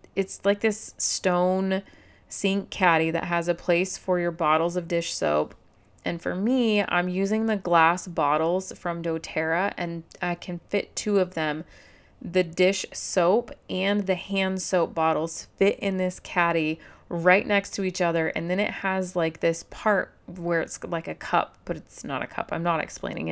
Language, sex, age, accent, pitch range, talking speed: English, female, 30-49, American, 160-190 Hz, 180 wpm